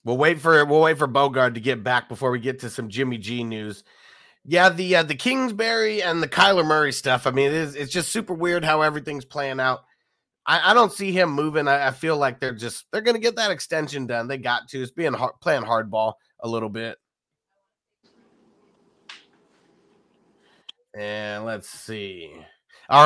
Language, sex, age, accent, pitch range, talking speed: English, male, 30-49, American, 125-165 Hz, 190 wpm